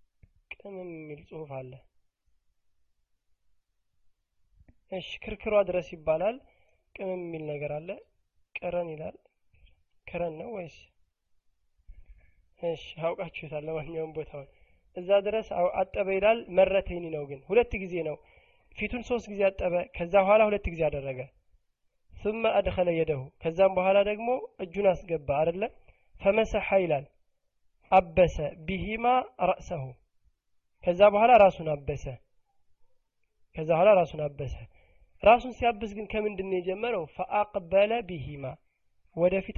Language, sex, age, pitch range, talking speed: Amharic, male, 20-39, 130-195 Hz, 85 wpm